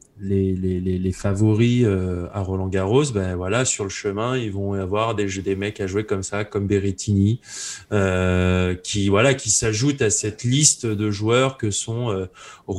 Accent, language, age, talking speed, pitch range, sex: French, French, 20-39, 175 wpm, 95-125 Hz, male